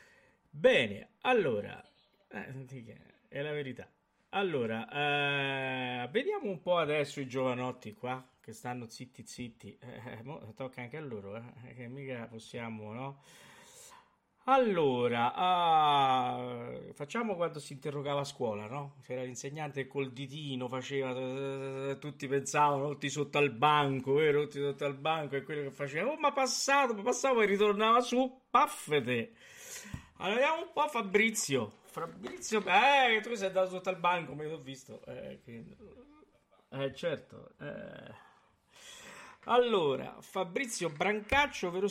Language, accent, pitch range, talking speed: Italian, native, 130-195 Hz, 135 wpm